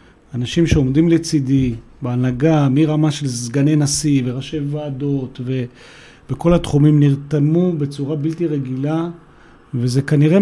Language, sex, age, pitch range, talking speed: Hebrew, male, 40-59, 140-170 Hz, 105 wpm